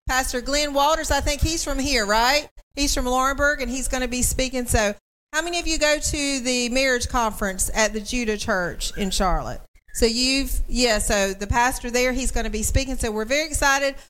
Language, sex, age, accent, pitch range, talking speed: English, female, 40-59, American, 220-270 Hz, 215 wpm